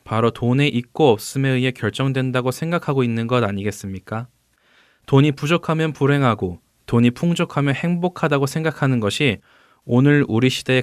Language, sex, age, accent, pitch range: Korean, male, 20-39, native, 110-145 Hz